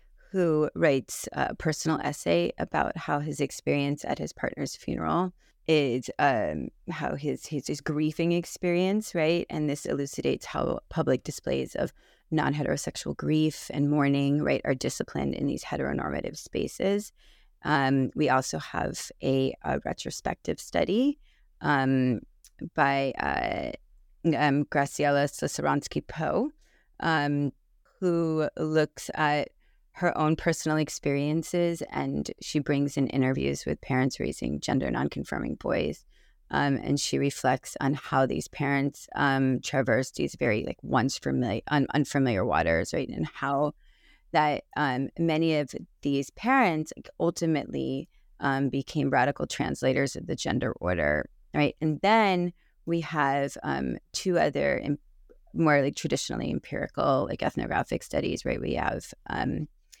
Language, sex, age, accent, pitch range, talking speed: English, female, 30-49, American, 135-155 Hz, 130 wpm